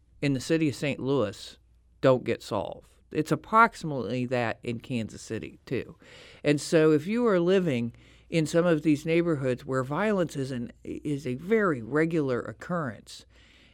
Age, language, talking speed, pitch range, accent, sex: 50-69, English, 155 wpm, 135-185 Hz, American, male